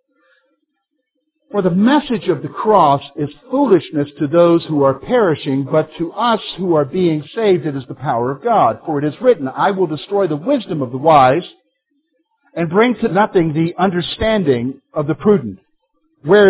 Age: 60-79